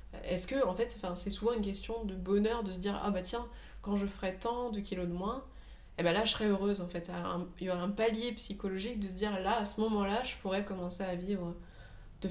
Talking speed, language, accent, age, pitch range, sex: 265 wpm, French, French, 20-39, 175-210 Hz, female